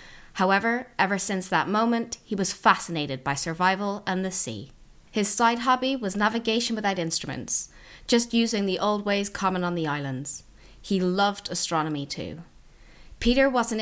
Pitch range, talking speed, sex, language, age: 165-225 Hz, 150 wpm, female, English, 30-49